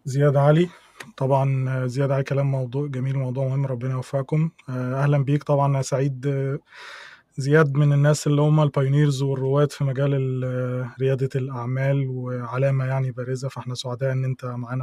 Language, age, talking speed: Arabic, 20-39, 140 wpm